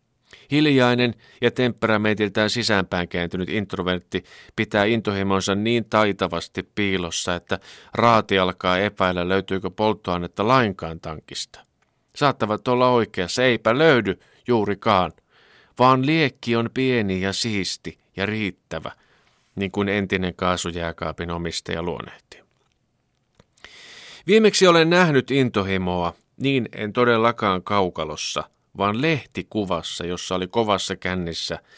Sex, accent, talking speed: male, native, 100 wpm